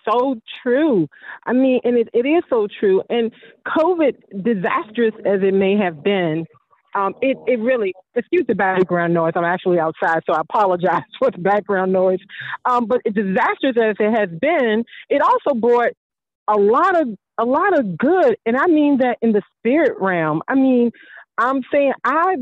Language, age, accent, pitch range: English, 40-59, American, 200-265 Hz